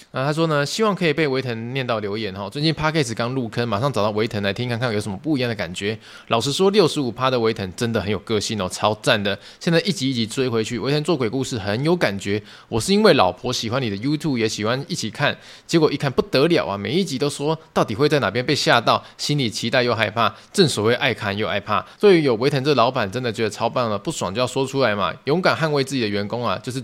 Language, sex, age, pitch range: Chinese, male, 20-39, 110-150 Hz